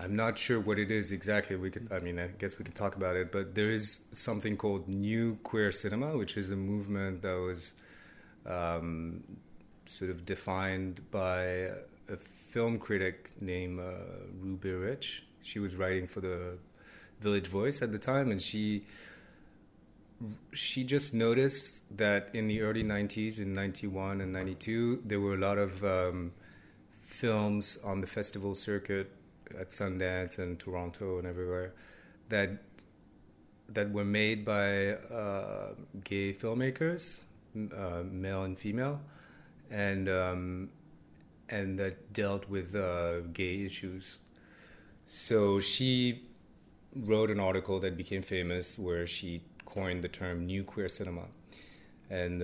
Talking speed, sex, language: 140 wpm, male, English